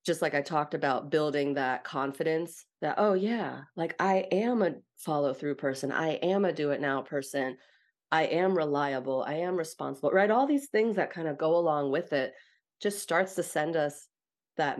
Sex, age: female, 30-49